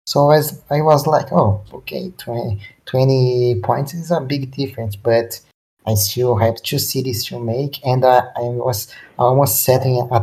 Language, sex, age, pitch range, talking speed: English, male, 20-39, 115-140 Hz, 170 wpm